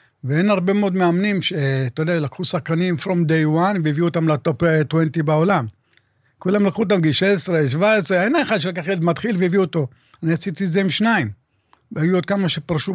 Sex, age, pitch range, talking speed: male, 50-69, 140-180 Hz, 185 wpm